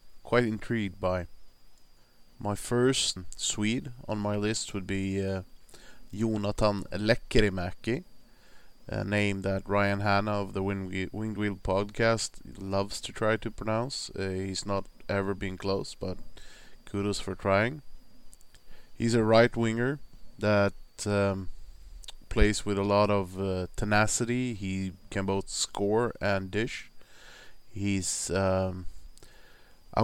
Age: 20-39